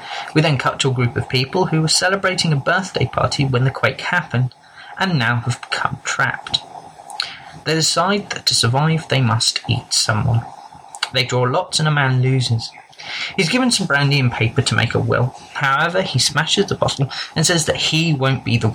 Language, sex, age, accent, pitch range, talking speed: English, male, 30-49, British, 125-175 Hz, 195 wpm